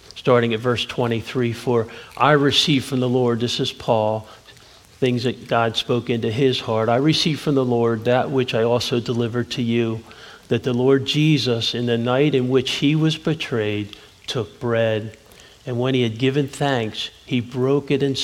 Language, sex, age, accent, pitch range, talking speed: English, male, 50-69, American, 110-130 Hz, 185 wpm